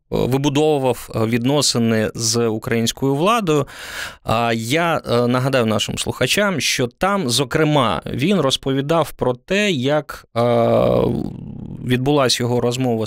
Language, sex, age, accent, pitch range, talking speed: Ukrainian, male, 20-39, native, 115-155 Hz, 90 wpm